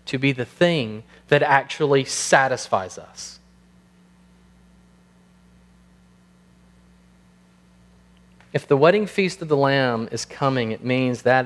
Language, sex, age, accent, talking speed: English, male, 30-49, American, 105 wpm